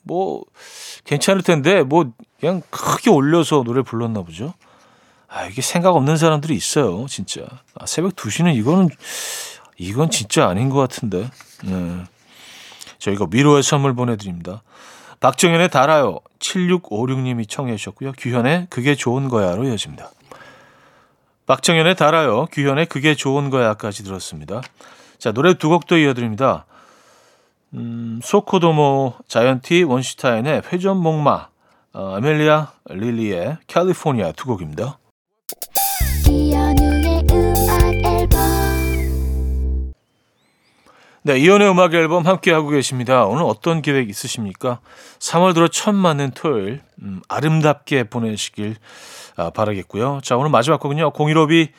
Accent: native